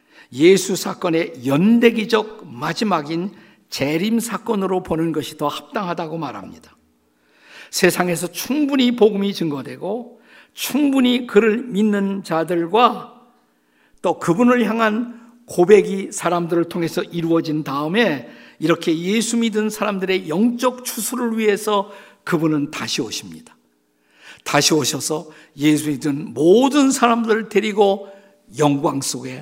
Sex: male